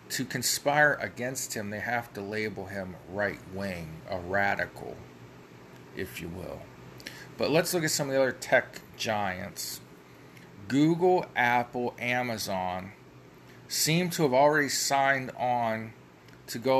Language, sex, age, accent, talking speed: English, male, 40-59, American, 130 wpm